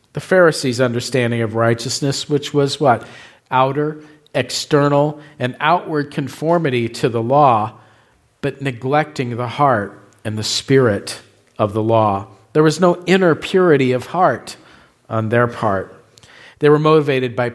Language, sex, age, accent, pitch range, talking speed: English, male, 50-69, American, 115-140 Hz, 135 wpm